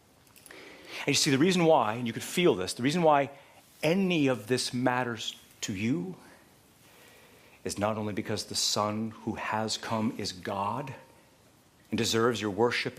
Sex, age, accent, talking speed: male, 40-59, American, 160 wpm